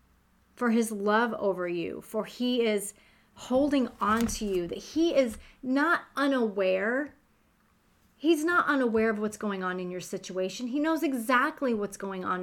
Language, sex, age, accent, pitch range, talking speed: English, female, 30-49, American, 190-230 Hz, 160 wpm